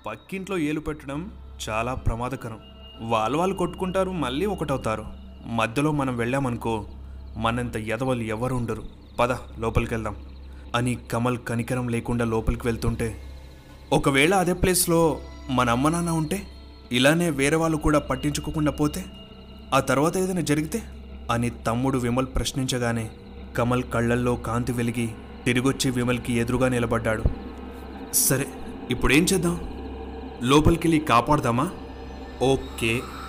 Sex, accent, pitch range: male, native, 110-140 Hz